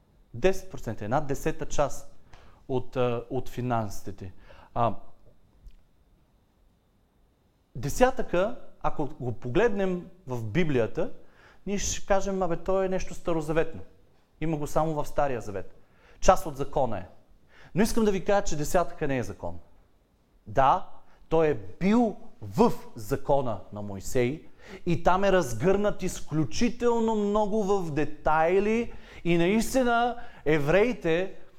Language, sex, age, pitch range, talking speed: Bulgarian, male, 40-59, 140-195 Hz, 115 wpm